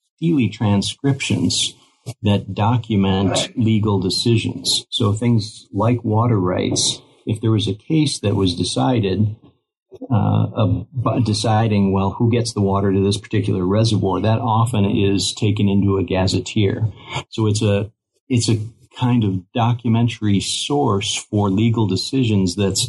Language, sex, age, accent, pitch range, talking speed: English, male, 50-69, American, 95-120 Hz, 135 wpm